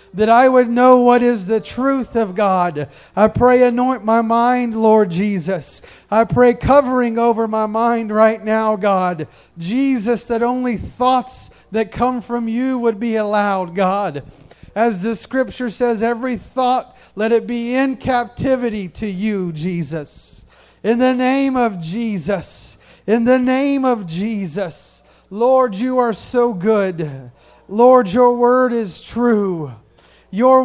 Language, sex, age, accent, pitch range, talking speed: English, male, 30-49, American, 195-250 Hz, 145 wpm